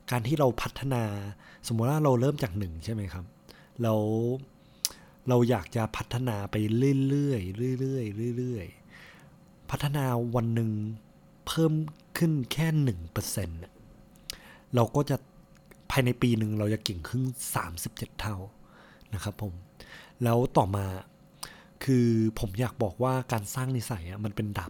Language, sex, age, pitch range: Thai, male, 20-39, 105-135 Hz